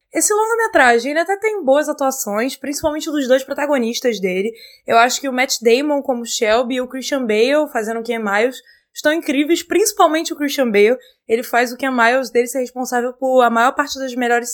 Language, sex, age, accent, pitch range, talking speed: Portuguese, female, 20-39, Brazilian, 235-295 Hz, 200 wpm